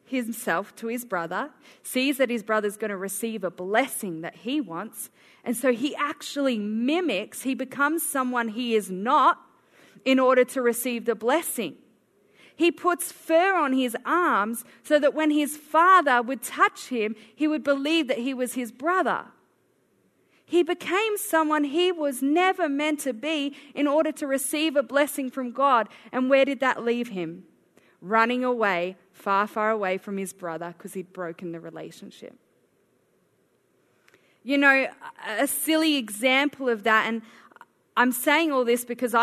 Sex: female